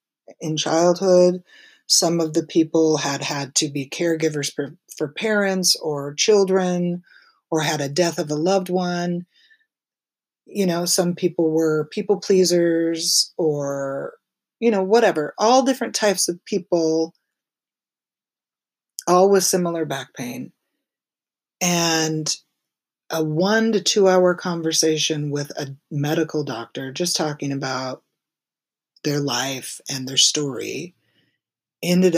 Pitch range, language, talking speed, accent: 140-180 Hz, English, 120 wpm, American